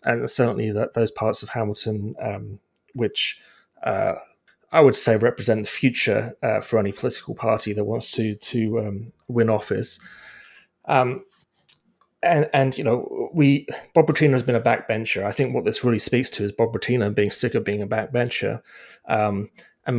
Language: English